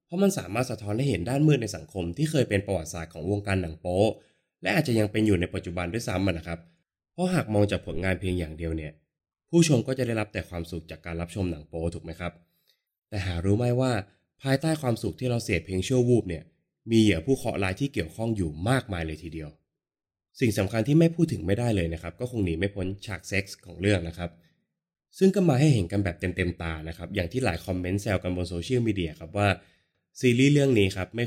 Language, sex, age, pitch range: Thai, male, 20-39, 85-120 Hz